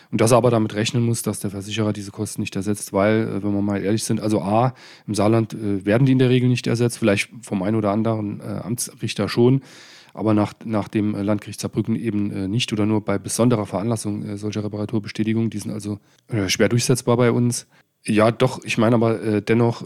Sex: male